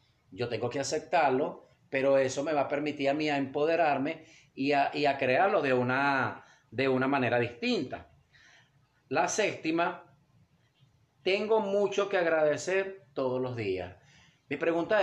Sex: male